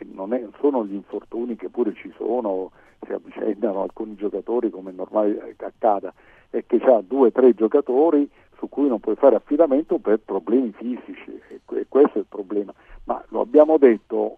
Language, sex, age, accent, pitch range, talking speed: Italian, male, 50-69, native, 110-150 Hz, 170 wpm